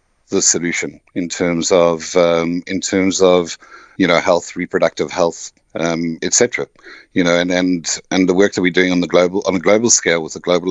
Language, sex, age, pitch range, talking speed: English, male, 50-69, 85-100 Hz, 200 wpm